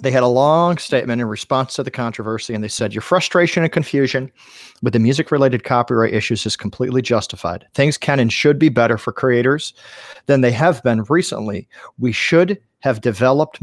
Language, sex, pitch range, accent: English, male, 120-170 Hz, American